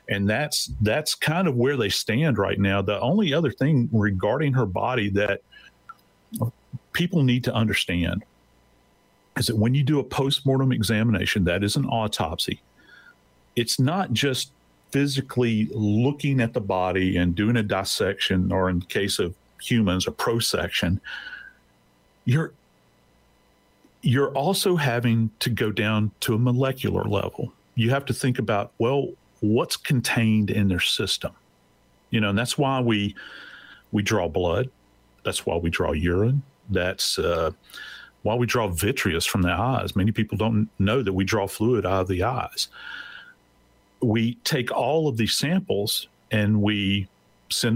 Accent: American